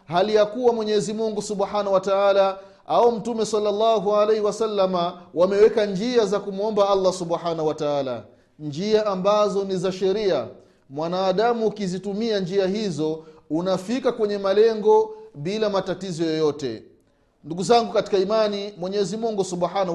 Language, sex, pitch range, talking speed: Swahili, male, 185-220 Hz, 130 wpm